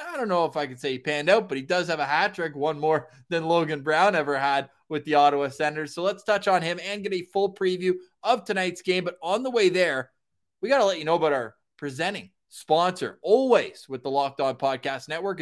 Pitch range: 140-190 Hz